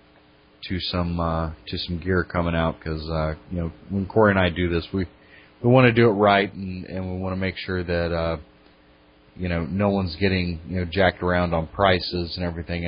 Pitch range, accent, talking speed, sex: 75-95 Hz, American, 205 wpm, male